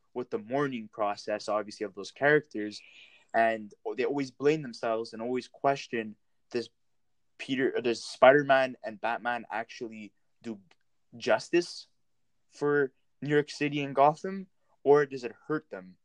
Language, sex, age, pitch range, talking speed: English, male, 20-39, 110-145 Hz, 135 wpm